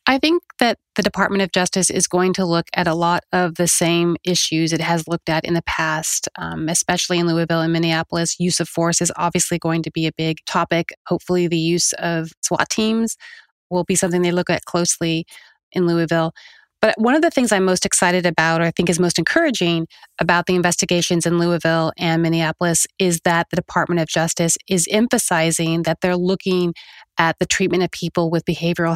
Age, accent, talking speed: 30-49, American, 200 wpm